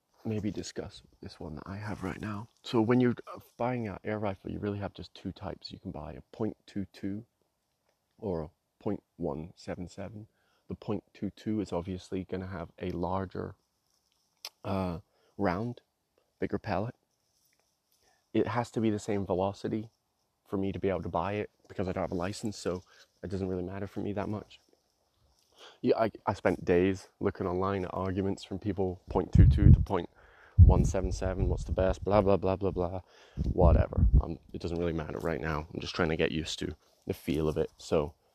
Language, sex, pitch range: English, male, 85-105 Hz